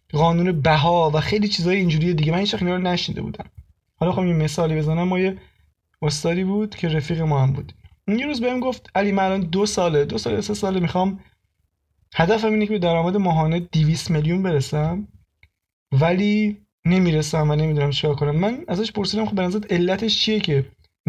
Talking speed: 190 wpm